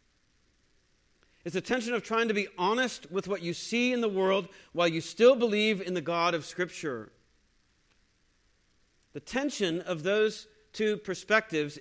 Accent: American